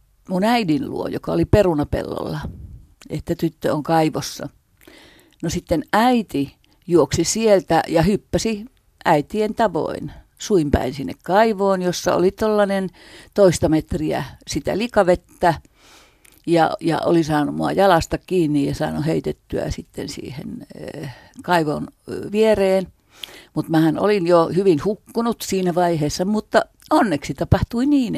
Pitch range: 155-205 Hz